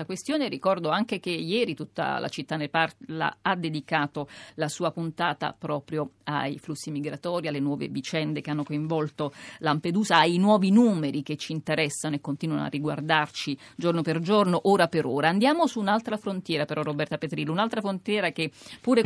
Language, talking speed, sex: Italian, 165 wpm, female